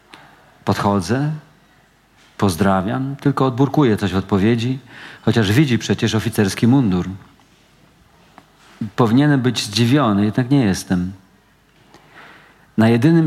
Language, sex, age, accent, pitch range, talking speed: Polish, male, 40-59, native, 100-125 Hz, 90 wpm